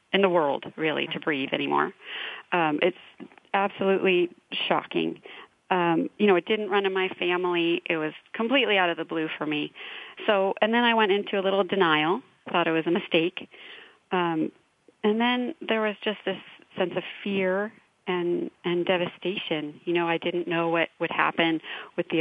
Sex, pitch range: female, 175-225 Hz